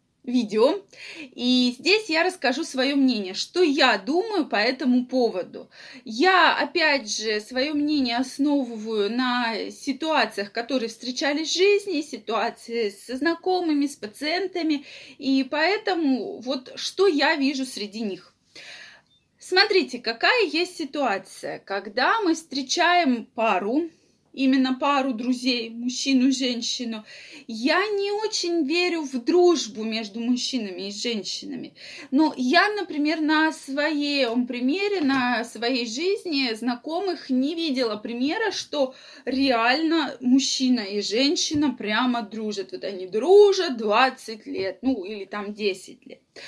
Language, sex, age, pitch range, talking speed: Russian, female, 20-39, 235-310 Hz, 115 wpm